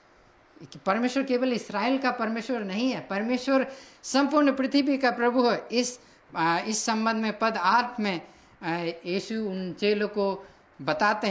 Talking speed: 145 wpm